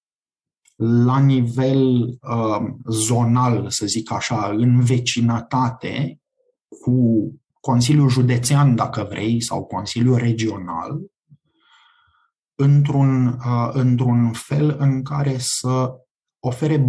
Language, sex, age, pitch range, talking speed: Romanian, male, 30-49, 115-145 Hz, 80 wpm